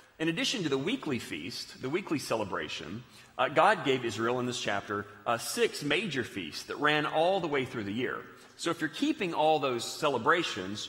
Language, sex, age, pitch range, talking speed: English, male, 40-59, 125-175 Hz, 195 wpm